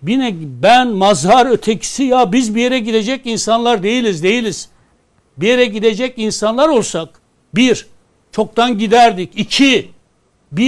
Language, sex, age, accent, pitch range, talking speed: Turkish, male, 60-79, native, 205-250 Hz, 125 wpm